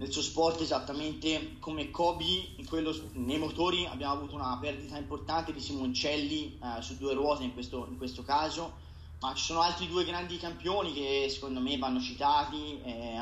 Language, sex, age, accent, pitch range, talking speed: Italian, male, 30-49, native, 135-185 Hz, 175 wpm